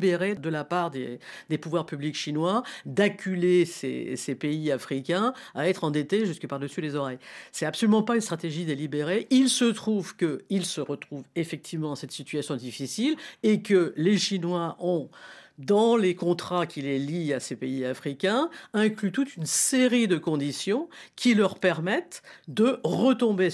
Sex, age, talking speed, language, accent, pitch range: female, 50-69, 160 wpm, French, French, 140-195 Hz